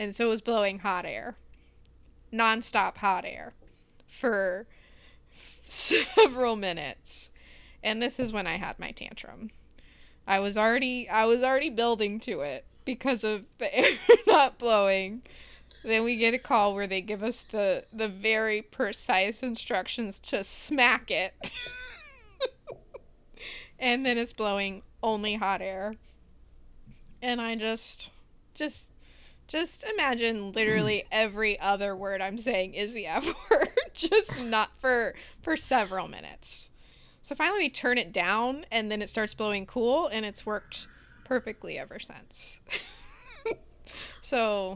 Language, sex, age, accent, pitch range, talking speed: English, female, 20-39, American, 200-255 Hz, 135 wpm